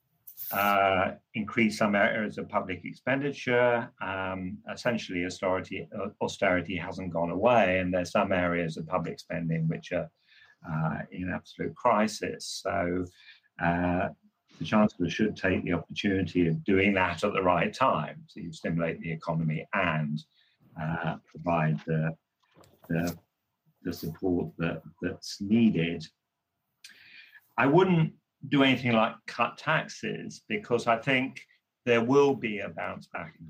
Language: English